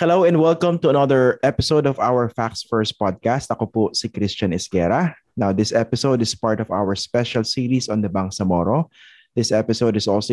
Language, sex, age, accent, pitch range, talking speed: English, male, 20-39, Filipino, 100-125 Hz, 185 wpm